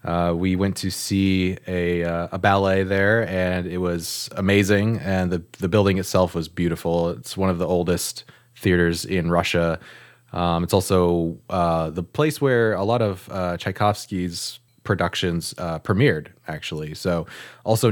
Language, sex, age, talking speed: English, male, 20-39, 155 wpm